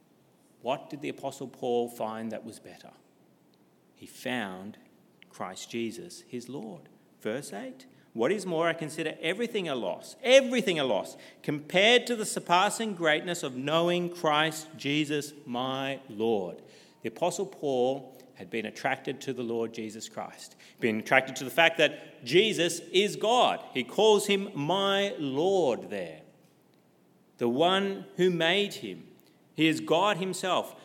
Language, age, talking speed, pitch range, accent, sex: English, 40-59, 145 wpm, 140-200 Hz, Australian, male